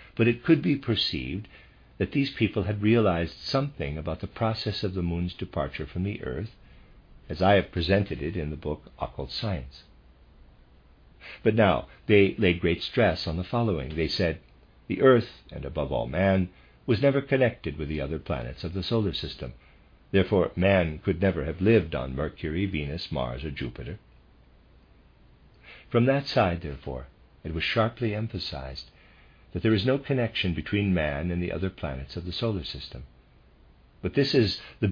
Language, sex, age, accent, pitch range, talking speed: English, male, 60-79, American, 70-110 Hz, 170 wpm